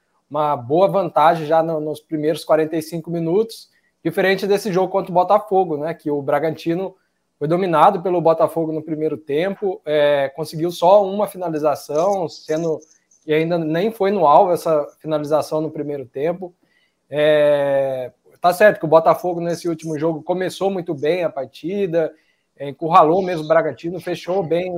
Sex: male